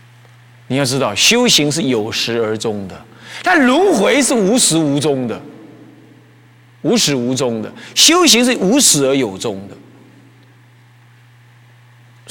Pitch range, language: 120-140 Hz, Chinese